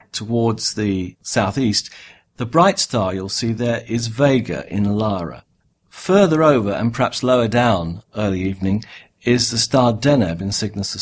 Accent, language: British, English